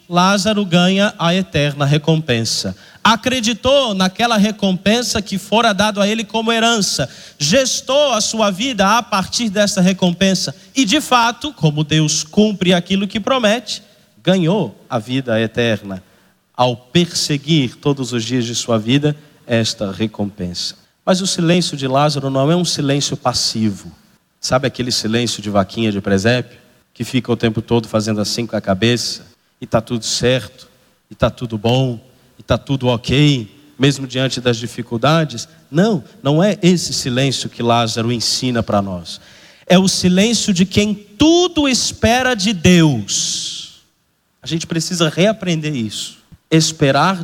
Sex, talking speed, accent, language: male, 145 wpm, Brazilian, Portuguese